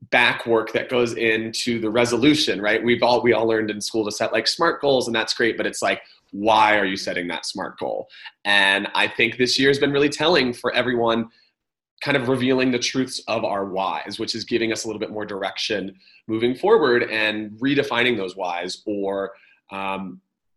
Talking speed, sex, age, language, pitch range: 200 wpm, male, 30-49, English, 105-130 Hz